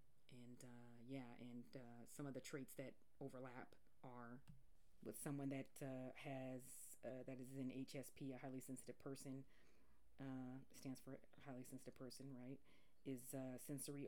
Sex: female